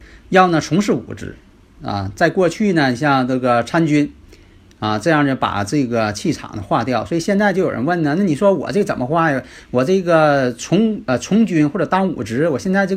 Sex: male